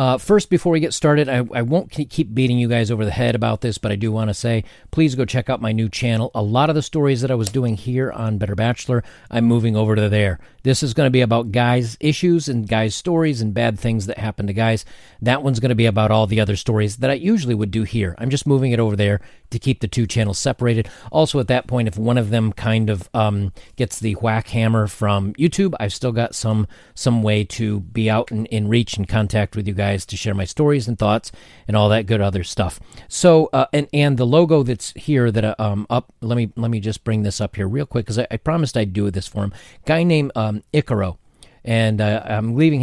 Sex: male